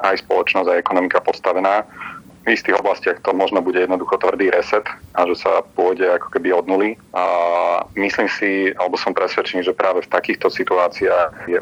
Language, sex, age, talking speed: Slovak, male, 40-59, 170 wpm